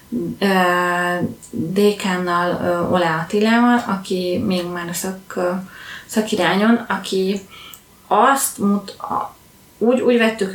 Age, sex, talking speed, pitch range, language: 20-39, female, 85 wpm, 175-210 Hz, English